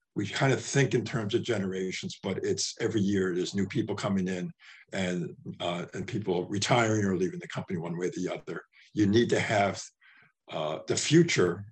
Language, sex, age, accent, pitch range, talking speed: English, male, 50-69, American, 100-125 Hz, 195 wpm